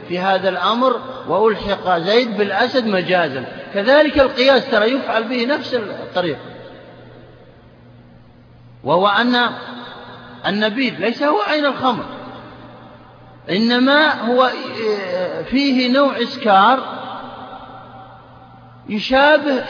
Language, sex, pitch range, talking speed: Arabic, male, 185-250 Hz, 80 wpm